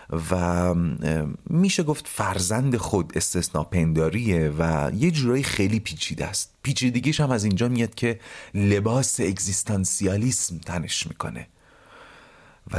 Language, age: Persian, 40-59